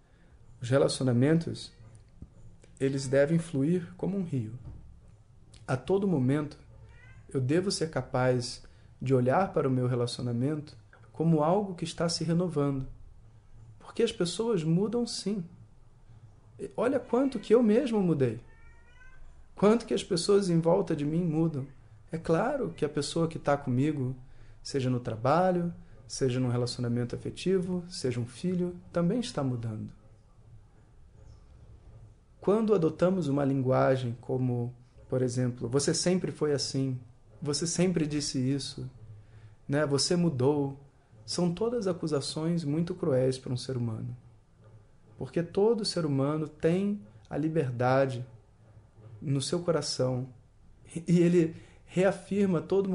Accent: Brazilian